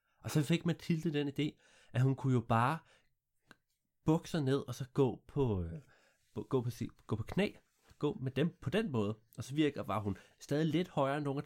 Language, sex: Danish, male